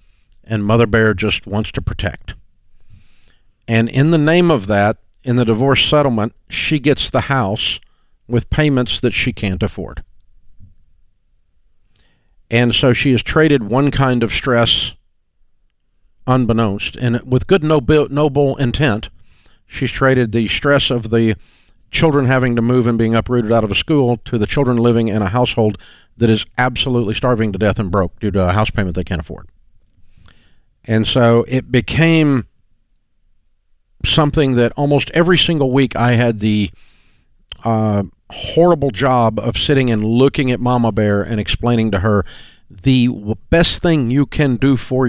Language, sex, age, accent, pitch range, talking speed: English, male, 50-69, American, 100-130 Hz, 155 wpm